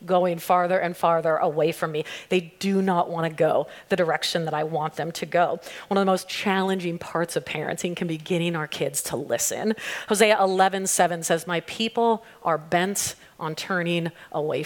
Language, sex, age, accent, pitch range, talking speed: English, female, 30-49, American, 165-195 Hz, 185 wpm